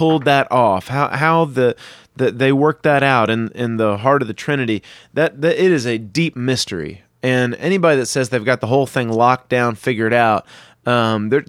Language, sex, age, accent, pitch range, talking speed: English, male, 30-49, American, 115-145 Hz, 210 wpm